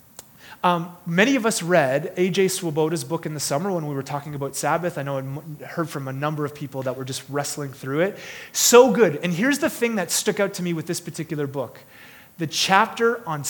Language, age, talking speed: English, 30-49, 220 wpm